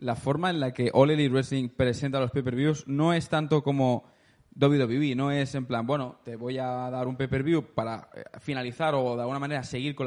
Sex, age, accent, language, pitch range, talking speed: male, 20-39, Spanish, Spanish, 125-155 Hz, 210 wpm